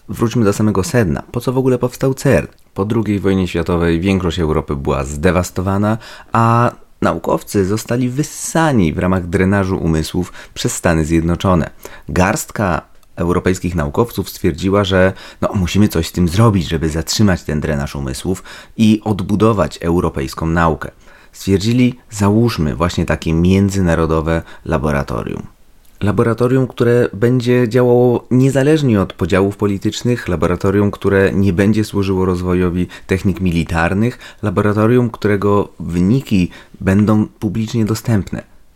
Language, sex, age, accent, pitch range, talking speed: Polish, male, 30-49, native, 85-110 Hz, 120 wpm